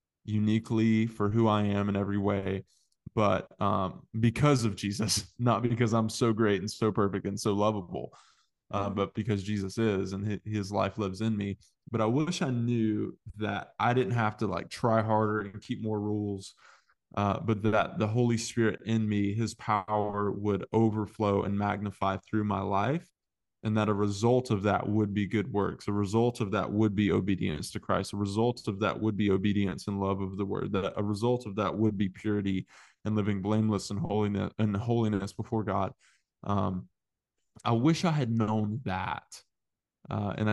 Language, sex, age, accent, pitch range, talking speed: English, male, 20-39, American, 100-110 Hz, 185 wpm